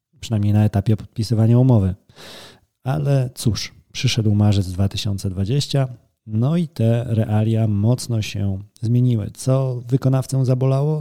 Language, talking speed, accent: Polish, 110 wpm, native